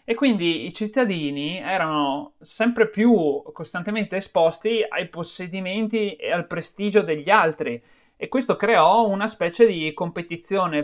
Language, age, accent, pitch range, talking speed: Italian, 30-49, native, 150-215 Hz, 125 wpm